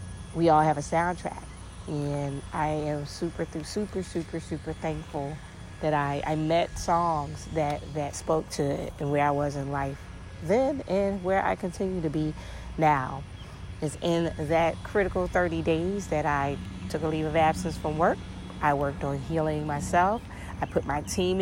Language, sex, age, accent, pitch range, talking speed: English, female, 30-49, American, 145-165 Hz, 165 wpm